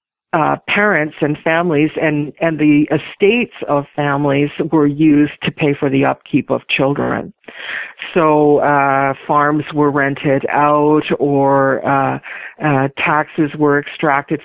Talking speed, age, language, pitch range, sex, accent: 130 wpm, 50-69, English, 140-155 Hz, female, American